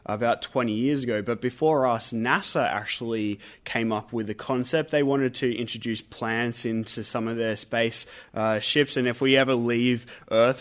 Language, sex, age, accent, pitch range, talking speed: English, male, 20-39, Australian, 115-135 Hz, 180 wpm